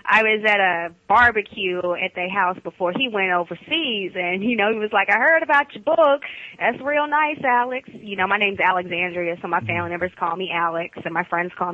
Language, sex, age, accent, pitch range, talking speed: English, female, 20-39, American, 190-300 Hz, 220 wpm